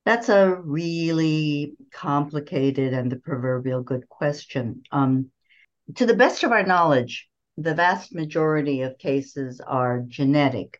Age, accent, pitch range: 60-79, American, 125-150 Hz